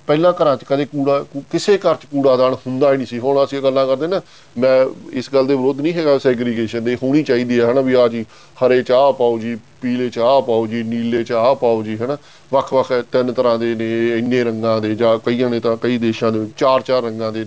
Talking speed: 230 wpm